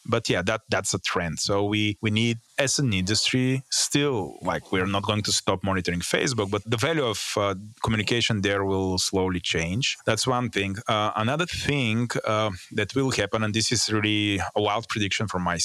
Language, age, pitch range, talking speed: English, 30-49, 100-115 Hz, 195 wpm